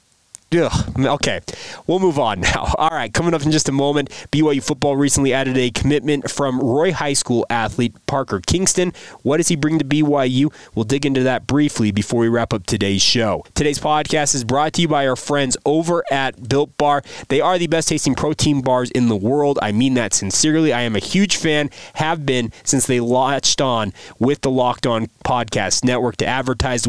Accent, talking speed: American, 200 wpm